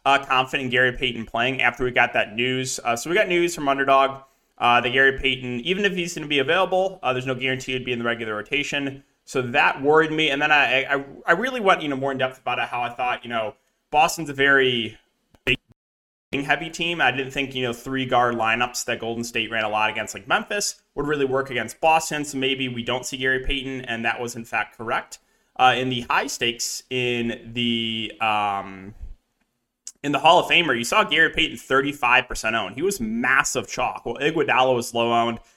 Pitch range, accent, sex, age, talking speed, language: 120-150 Hz, American, male, 20-39, 220 wpm, English